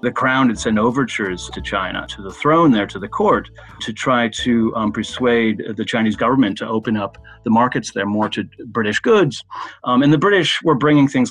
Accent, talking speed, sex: American, 205 wpm, male